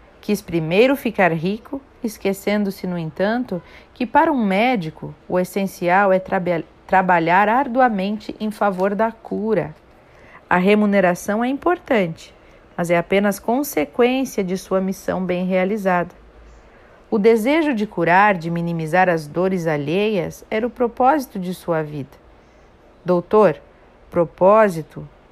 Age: 40-59